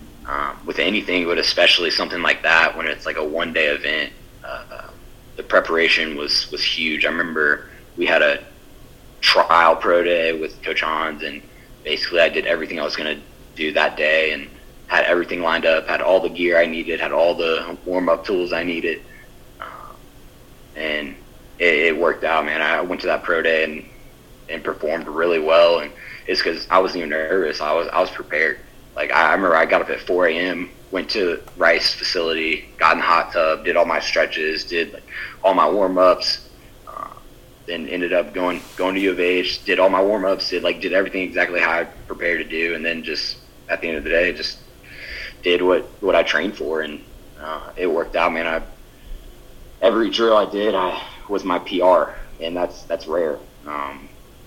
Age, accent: 20-39, American